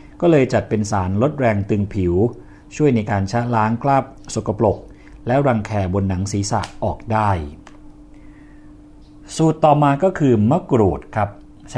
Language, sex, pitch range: Thai, male, 100-125 Hz